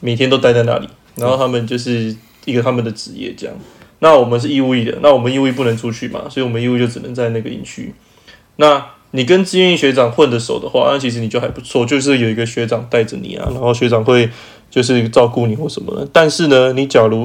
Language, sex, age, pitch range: Chinese, male, 20-39, 115-135 Hz